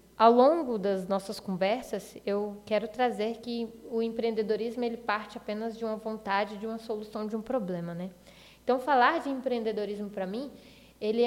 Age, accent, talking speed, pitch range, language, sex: 10-29, Brazilian, 160 wpm, 205-250 Hz, Portuguese, female